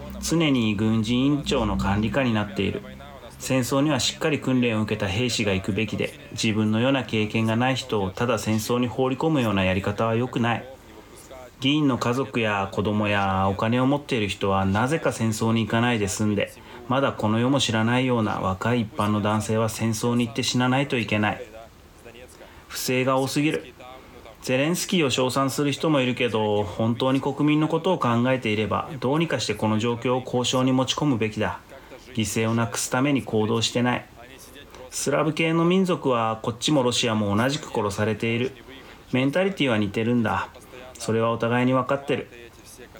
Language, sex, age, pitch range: Japanese, male, 30-49, 110-130 Hz